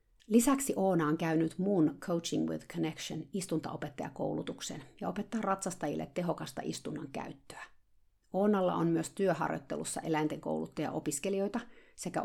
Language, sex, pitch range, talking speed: Finnish, female, 155-190 Hz, 115 wpm